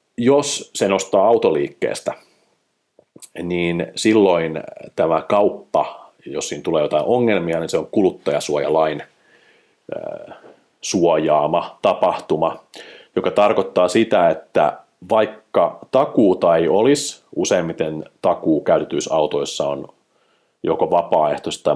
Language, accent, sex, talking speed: Finnish, native, male, 90 wpm